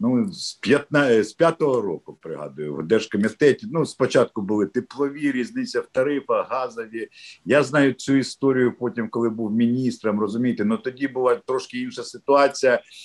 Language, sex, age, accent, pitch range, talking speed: Ukrainian, male, 50-69, native, 115-150 Hz, 140 wpm